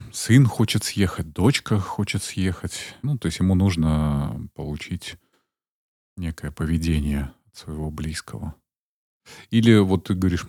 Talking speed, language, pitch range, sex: 115 wpm, Russian, 85-100 Hz, male